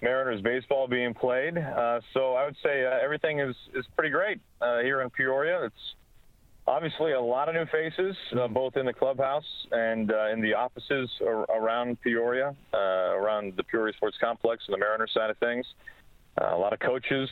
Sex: male